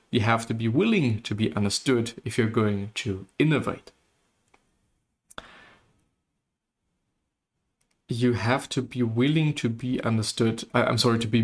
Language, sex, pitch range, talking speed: English, male, 110-125 Hz, 130 wpm